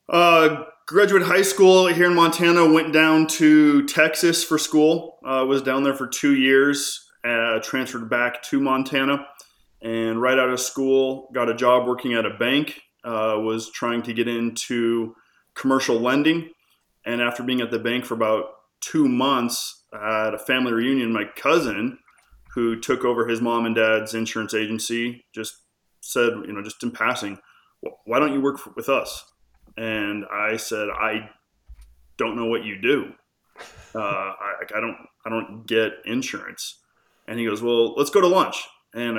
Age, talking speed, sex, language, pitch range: 20-39, 165 wpm, male, English, 110-140 Hz